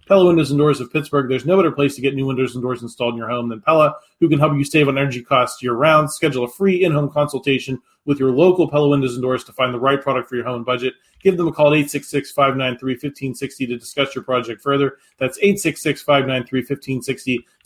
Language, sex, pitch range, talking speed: English, male, 135-165 Hz, 220 wpm